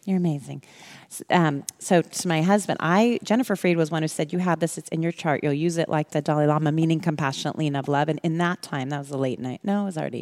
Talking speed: 270 wpm